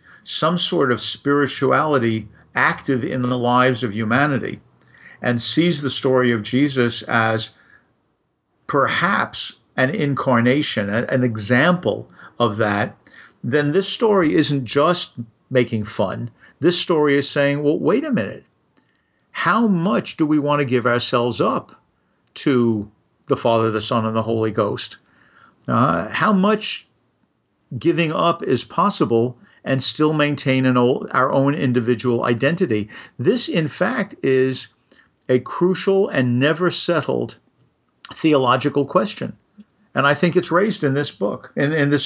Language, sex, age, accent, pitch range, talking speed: English, male, 50-69, American, 125-155 Hz, 130 wpm